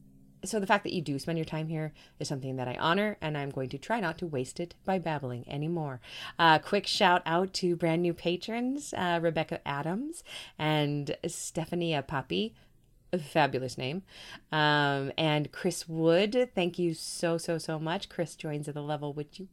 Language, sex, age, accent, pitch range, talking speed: English, female, 30-49, American, 130-175 Hz, 190 wpm